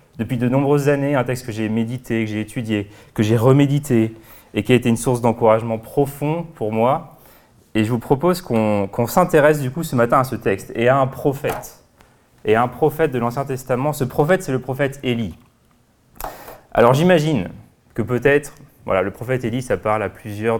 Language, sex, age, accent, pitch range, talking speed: French, male, 20-39, French, 115-145 Hz, 200 wpm